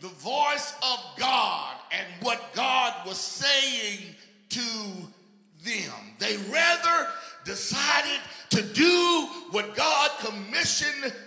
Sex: male